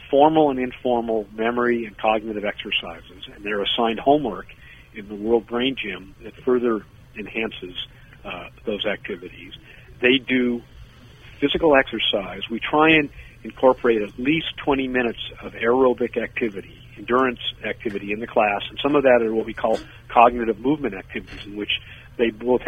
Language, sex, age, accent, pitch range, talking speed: English, male, 50-69, American, 110-125 Hz, 150 wpm